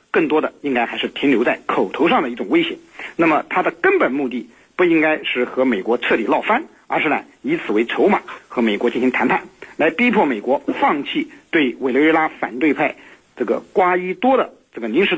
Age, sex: 50-69, male